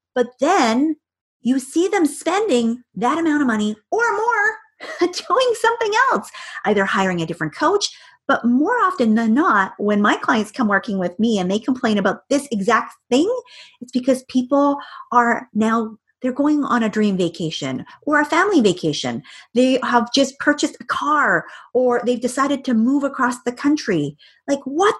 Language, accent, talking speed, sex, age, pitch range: English, American, 170 wpm, female, 30-49, 215-295 Hz